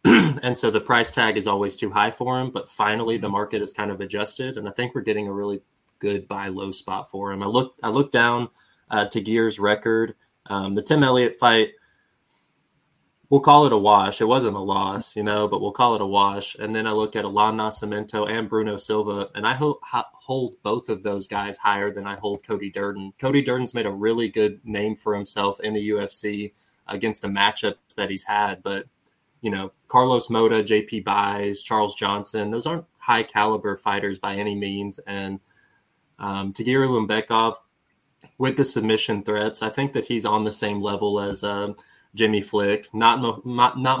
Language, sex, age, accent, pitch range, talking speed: English, male, 20-39, American, 100-115 Hz, 200 wpm